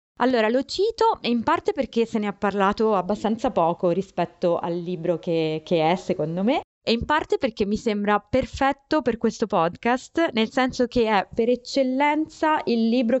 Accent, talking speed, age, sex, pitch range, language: native, 175 wpm, 20-39, female, 185-250 Hz, Italian